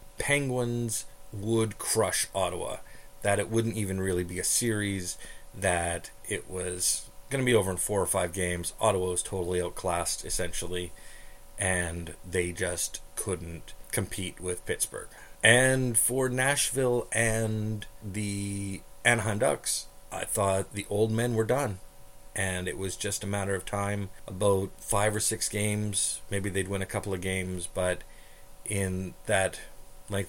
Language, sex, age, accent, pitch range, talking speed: English, male, 30-49, American, 85-105 Hz, 145 wpm